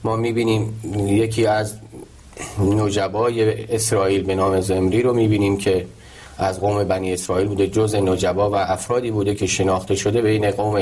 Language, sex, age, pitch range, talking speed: Persian, male, 30-49, 100-110 Hz, 155 wpm